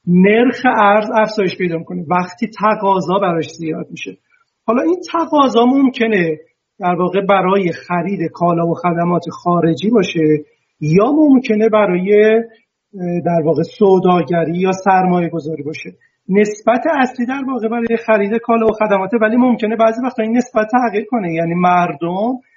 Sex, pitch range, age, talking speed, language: male, 175-225 Hz, 40-59, 140 wpm, Persian